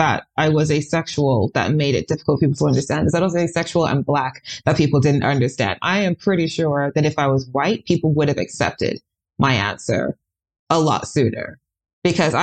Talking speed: 205 wpm